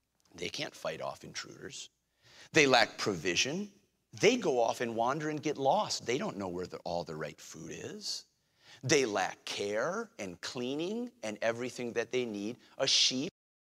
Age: 40-59